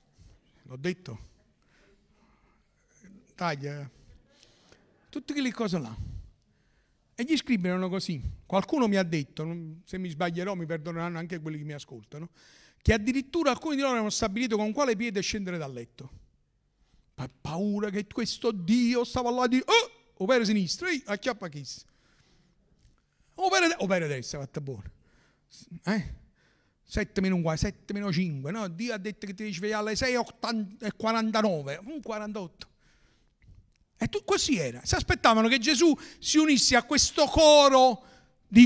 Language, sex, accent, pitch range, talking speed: Italian, male, native, 170-260 Hz, 135 wpm